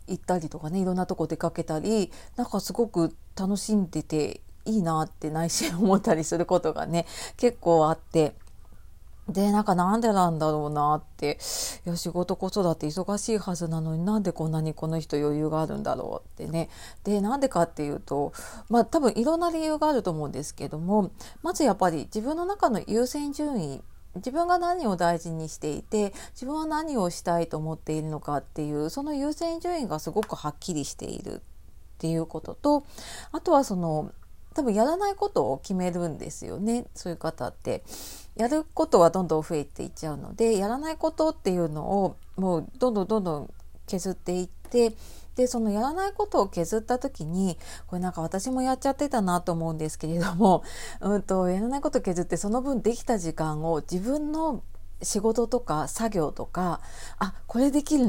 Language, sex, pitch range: Japanese, female, 160-235 Hz